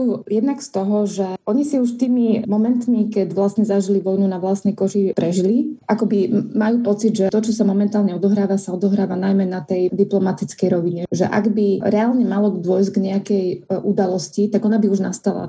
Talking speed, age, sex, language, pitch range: 180 wpm, 20-39, female, Slovak, 190-210 Hz